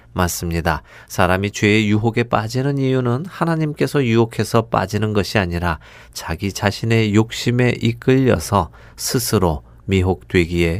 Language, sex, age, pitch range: Korean, male, 40-59, 90-125 Hz